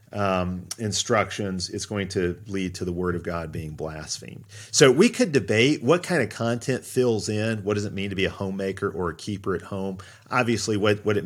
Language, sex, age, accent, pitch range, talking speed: English, male, 40-59, American, 95-115 Hz, 215 wpm